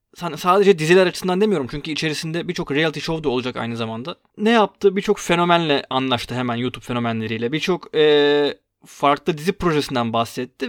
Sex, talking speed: male, 150 wpm